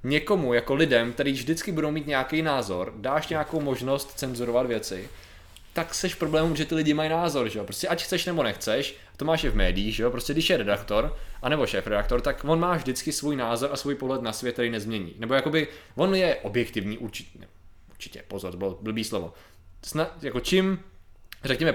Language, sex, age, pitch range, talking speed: Czech, male, 20-39, 110-150 Hz, 200 wpm